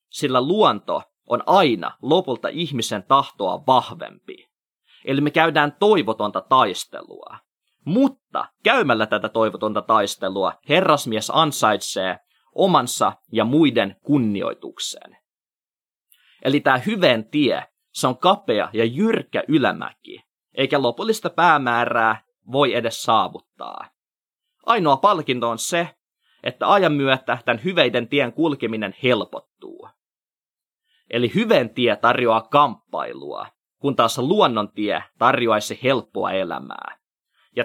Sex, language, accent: male, Finnish, native